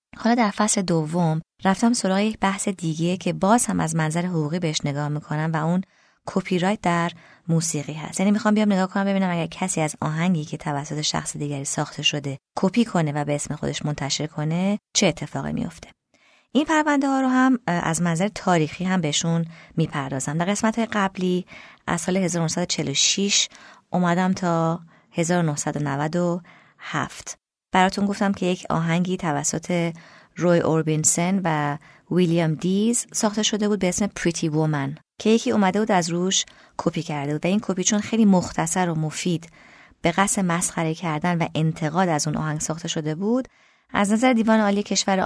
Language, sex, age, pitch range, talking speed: Persian, female, 20-39, 160-200 Hz, 165 wpm